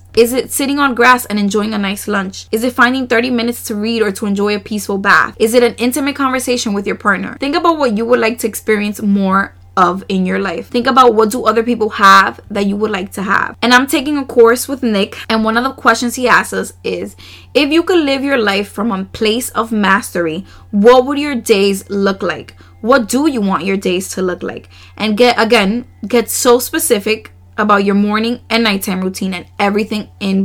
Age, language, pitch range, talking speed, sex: 20-39, English, 190-240 Hz, 225 wpm, female